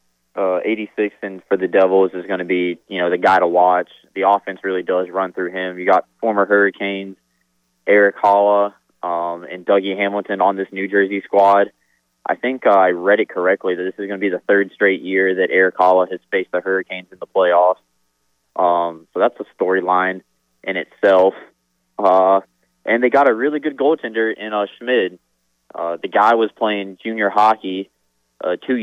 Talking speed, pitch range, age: 190 wpm, 90-105 Hz, 20-39